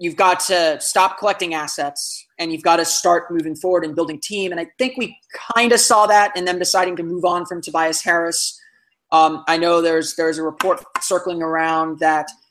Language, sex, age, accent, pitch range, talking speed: English, male, 20-39, American, 160-190 Hz, 205 wpm